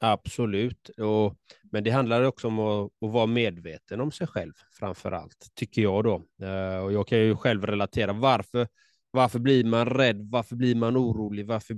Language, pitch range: Swedish, 100-120 Hz